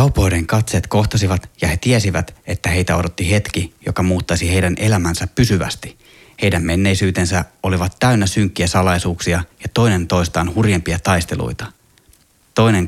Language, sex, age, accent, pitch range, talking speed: Finnish, male, 30-49, native, 85-100 Hz, 125 wpm